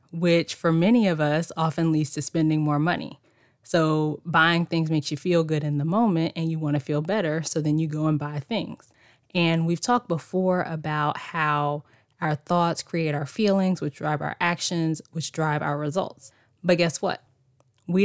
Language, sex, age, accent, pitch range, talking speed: English, female, 20-39, American, 150-170 Hz, 190 wpm